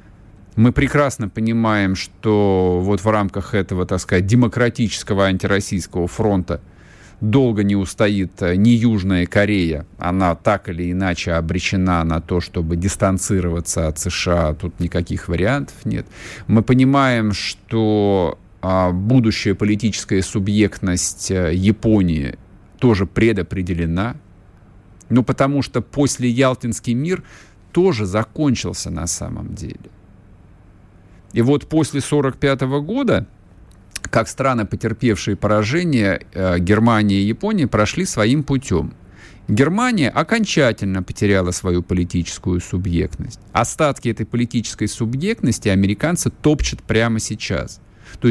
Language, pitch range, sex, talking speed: Russian, 95-120 Hz, male, 105 wpm